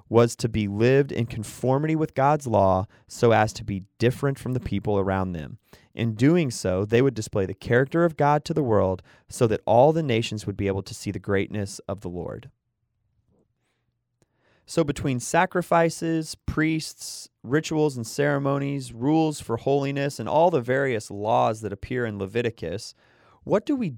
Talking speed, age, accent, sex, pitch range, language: 175 wpm, 30-49, American, male, 105-145 Hz, English